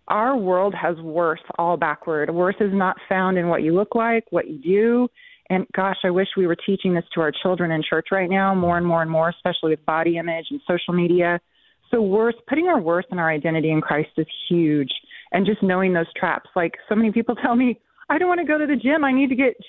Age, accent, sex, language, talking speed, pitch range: 30-49, American, female, English, 240 wpm, 175-235 Hz